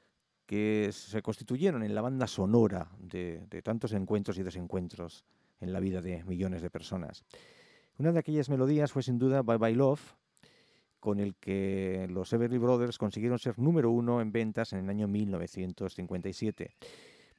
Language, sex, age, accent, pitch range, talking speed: English, male, 50-69, Spanish, 95-120 Hz, 160 wpm